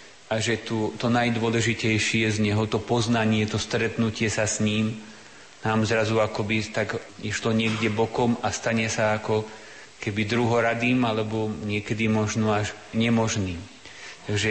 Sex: male